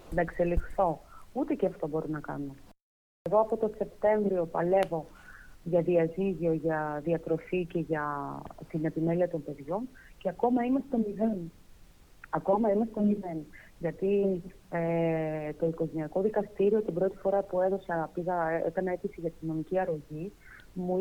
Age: 30-49